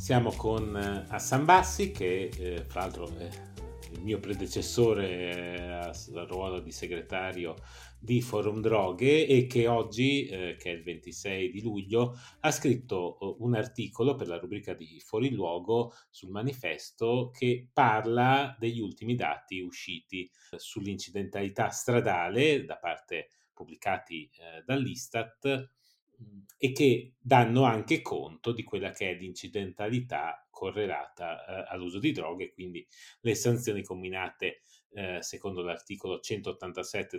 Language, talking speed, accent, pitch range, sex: Italian, 130 wpm, native, 95-125 Hz, male